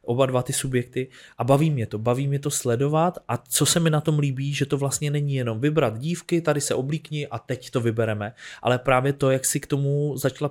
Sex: male